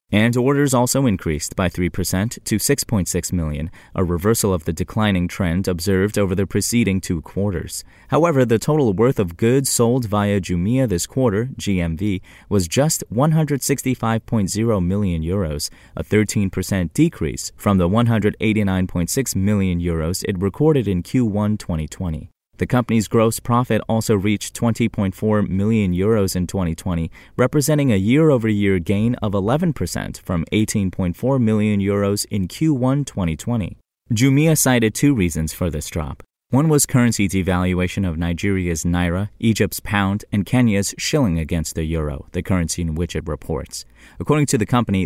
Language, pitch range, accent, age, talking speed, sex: English, 90-115 Hz, American, 30-49, 140 wpm, male